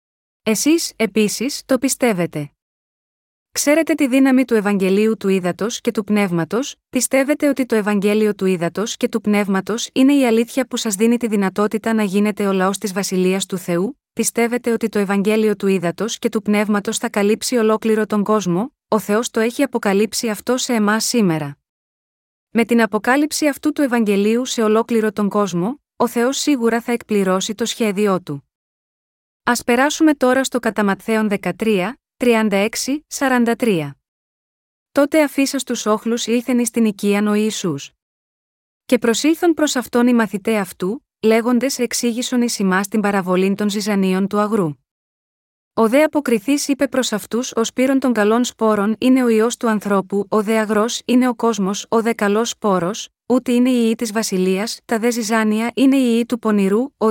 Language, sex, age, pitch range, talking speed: Greek, female, 30-49, 205-245 Hz, 160 wpm